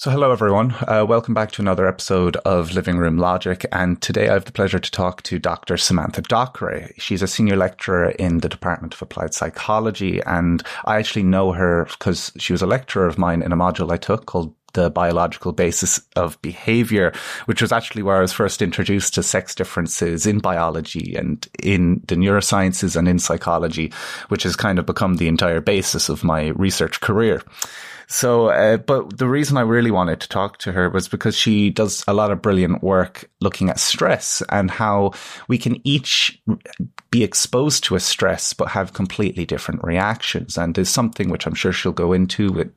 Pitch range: 90-110 Hz